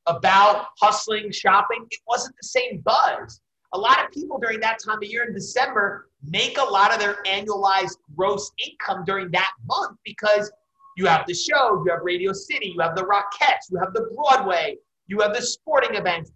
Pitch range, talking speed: 195-255 Hz, 190 wpm